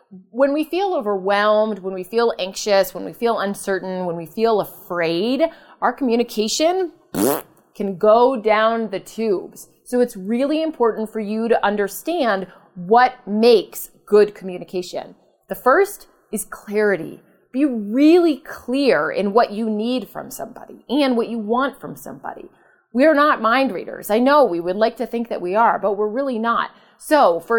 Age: 30-49